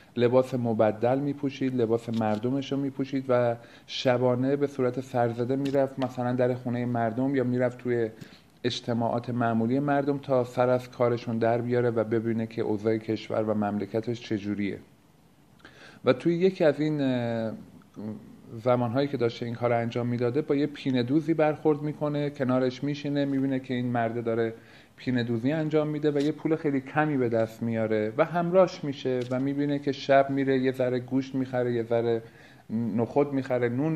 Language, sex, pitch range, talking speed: Persian, male, 120-145 Hz, 165 wpm